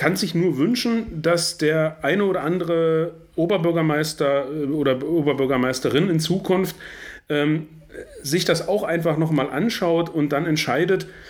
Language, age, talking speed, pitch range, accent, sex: German, 40-59, 130 wpm, 130-165 Hz, German, male